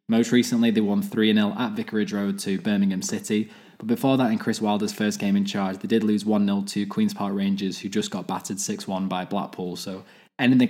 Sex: male